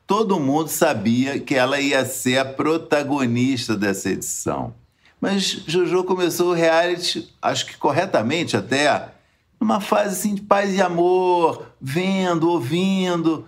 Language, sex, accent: Portuguese, male, Brazilian